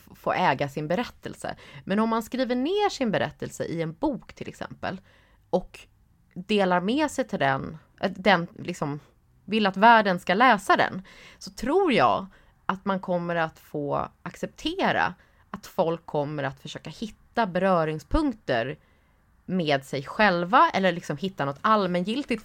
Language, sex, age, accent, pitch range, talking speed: English, female, 20-39, Swedish, 145-210 Hz, 145 wpm